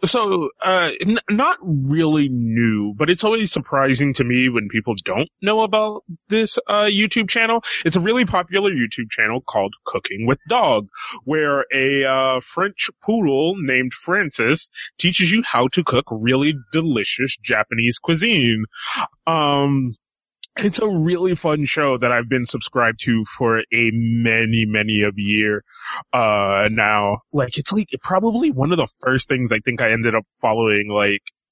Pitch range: 115-180 Hz